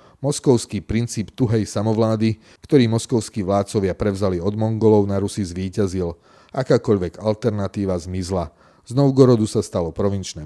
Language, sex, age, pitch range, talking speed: Slovak, male, 30-49, 95-110 Hz, 120 wpm